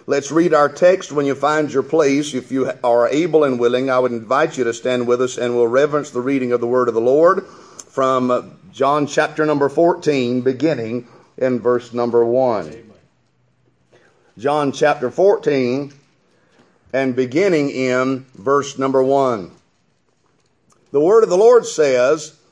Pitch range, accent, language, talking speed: 125-145 Hz, American, English, 155 wpm